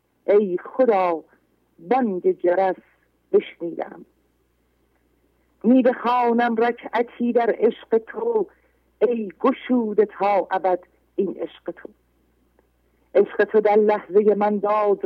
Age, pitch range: 50-69, 195-230 Hz